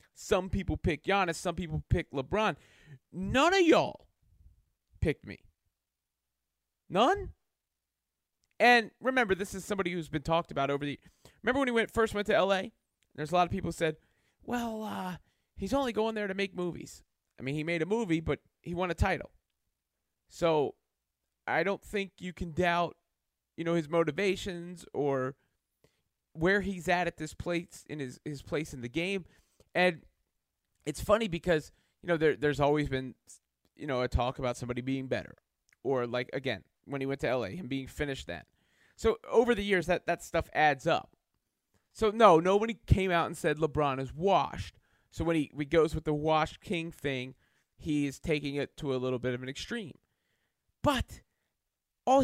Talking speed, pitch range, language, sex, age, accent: 180 wpm, 130-195 Hz, English, male, 30-49, American